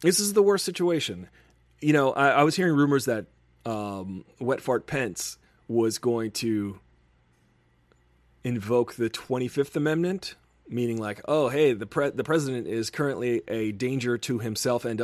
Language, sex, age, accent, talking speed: English, male, 30-49, American, 155 wpm